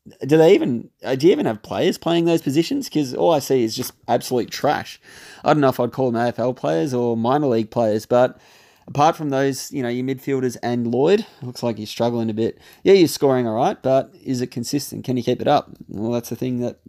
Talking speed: 240 wpm